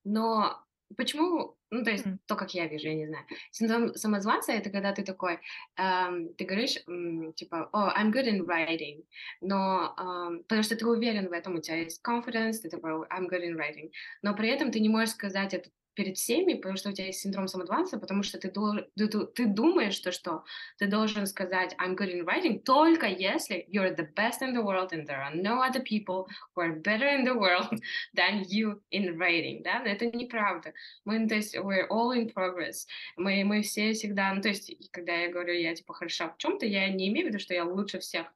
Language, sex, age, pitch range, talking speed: Russian, female, 20-39, 180-230 Hz, 215 wpm